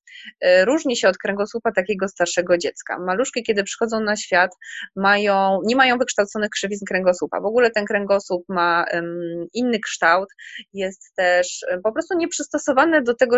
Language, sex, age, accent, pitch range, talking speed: Polish, female, 20-39, native, 185-220 Hz, 140 wpm